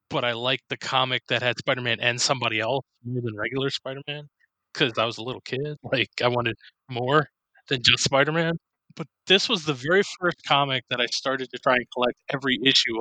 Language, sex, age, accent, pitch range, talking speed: English, male, 20-39, American, 120-145 Hz, 205 wpm